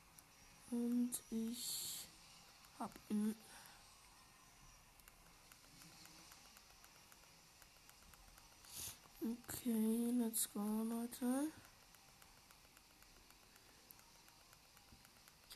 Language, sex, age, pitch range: German, female, 20-39, 210-245 Hz